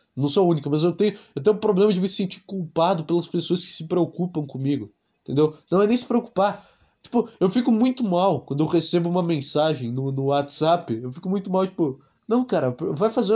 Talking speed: 220 wpm